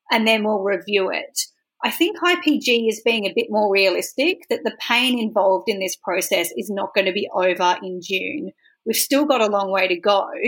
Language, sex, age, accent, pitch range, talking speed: English, female, 40-59, Australian, 200-260 Hz, 210 wpm